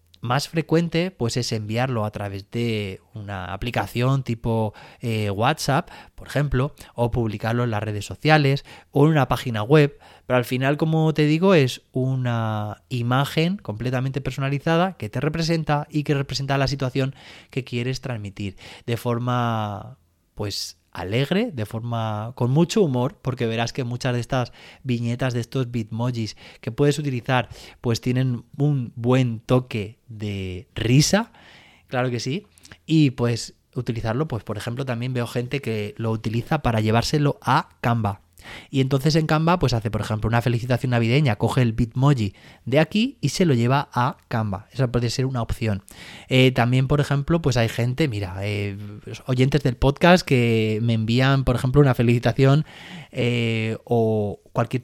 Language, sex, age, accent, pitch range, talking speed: Spanish, male, 20-39, Spanish, 110-135 Hz, 160 wpm